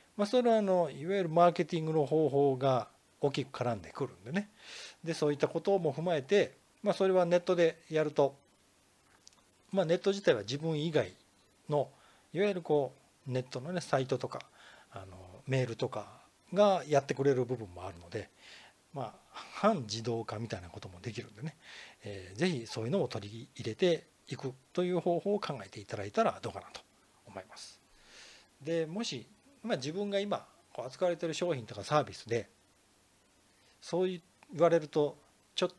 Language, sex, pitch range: Japanese, male, 120-175 Hz